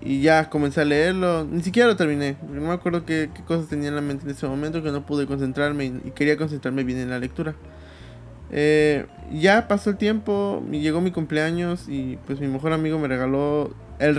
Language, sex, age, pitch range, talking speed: Spanish, male, 20-39, 125-160 Hz, 210 wpm